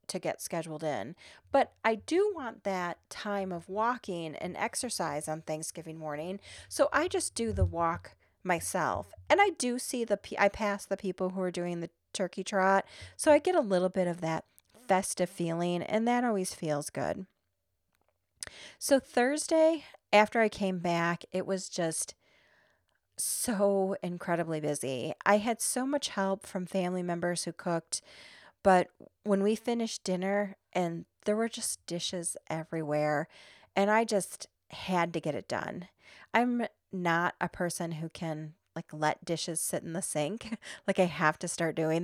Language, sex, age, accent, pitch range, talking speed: English, female, 40-59, American, 165-205 Hz, 160 wpm